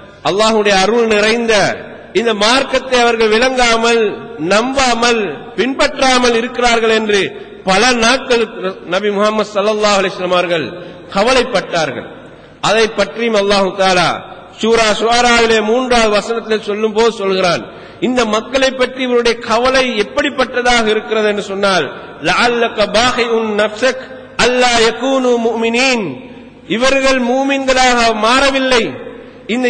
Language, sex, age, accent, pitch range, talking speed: Tamil, male, 50-69, native, 220-260 Hz, 85 wpm